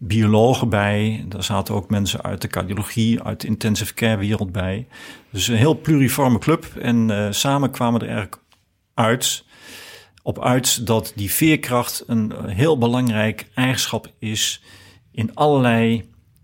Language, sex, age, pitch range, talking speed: Dutch, male, 50-69, 105-125 Hz, 140 wpm